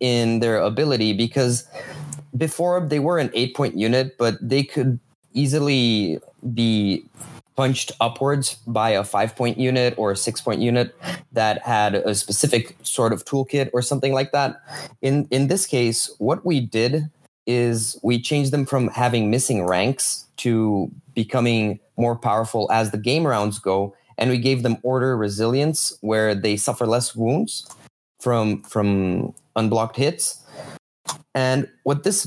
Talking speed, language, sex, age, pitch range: 150 wpm, English, male, 20-39, 110-135 Hz